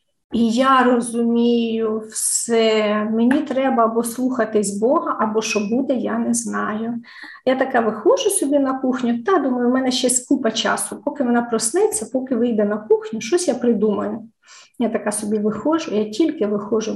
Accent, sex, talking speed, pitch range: native, female, 160 wpm, 220-275 Hz